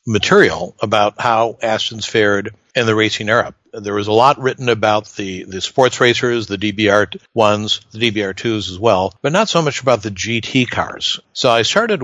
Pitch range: 100-120 Hz